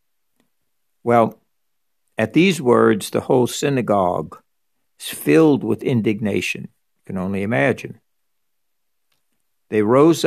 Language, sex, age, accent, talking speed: English, male, 60-79, American, 100 wpm